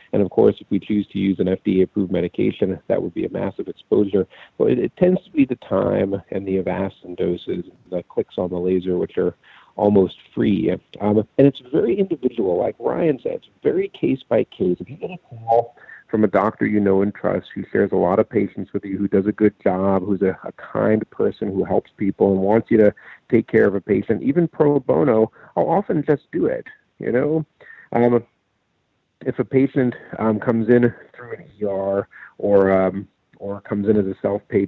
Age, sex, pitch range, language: 50-69, male, 95-120 Hz, English